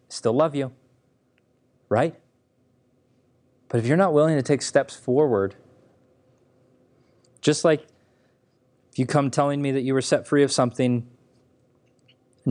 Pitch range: 125-130 Hz